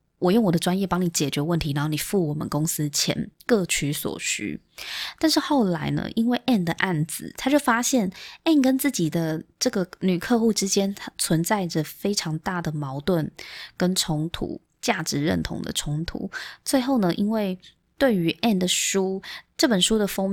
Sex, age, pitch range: female, 20-39, 160-215 Hz